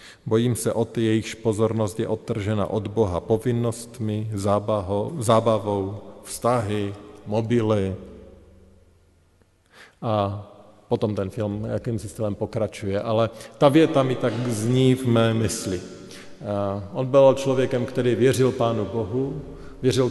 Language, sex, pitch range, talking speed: Slovak, male, 105-125 Hz, 120 wpm